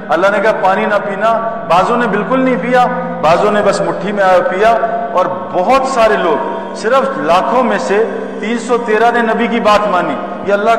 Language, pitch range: Urdu, 185-225 Hz